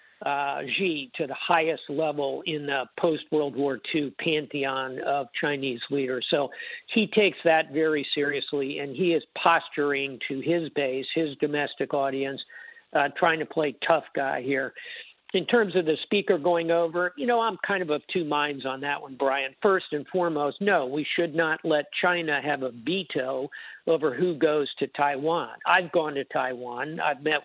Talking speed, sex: 175 wpm, male